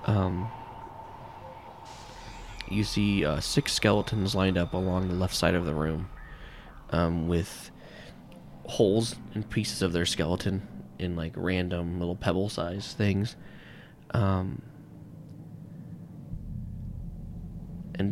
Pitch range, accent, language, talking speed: 85-105 Hz, American, English, 105 wpm